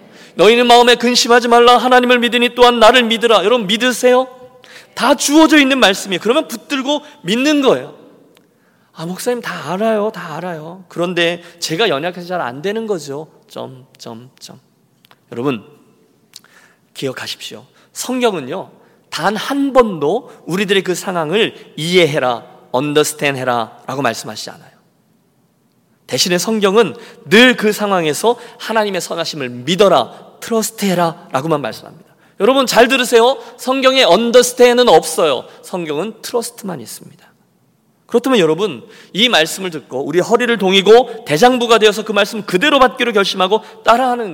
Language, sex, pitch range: Korean, male, 180-250 Hz